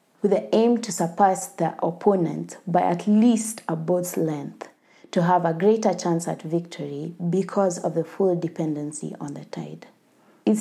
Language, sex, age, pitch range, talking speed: English, female, 20-39, 160-200 Hz, 165 wpm